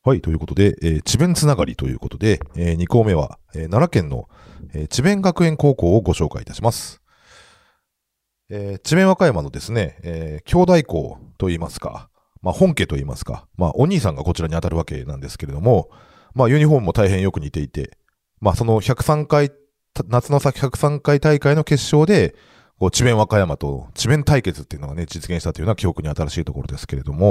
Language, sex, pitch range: Japanese, male, 80-125 Hz